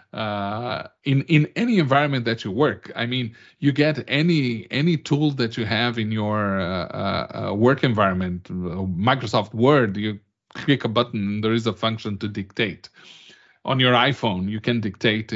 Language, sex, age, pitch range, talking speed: English, male, 40-59, 110-135 Hz, 170 wpm